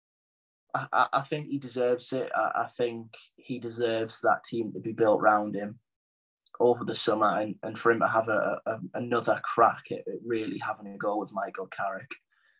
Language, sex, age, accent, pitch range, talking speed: English, male, 10-29, British, 115-130 Hz, 170 wpm